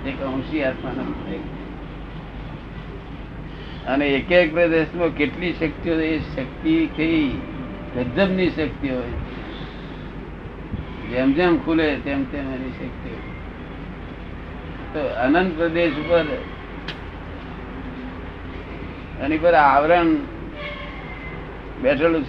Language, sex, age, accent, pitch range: Gujarati, male, 50-69, native, 120-155 Hz